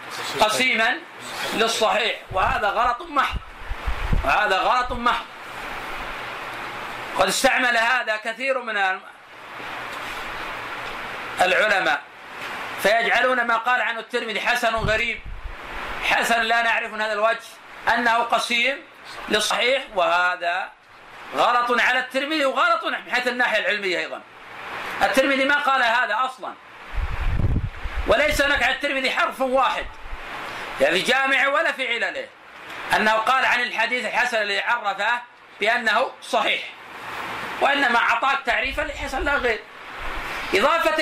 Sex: male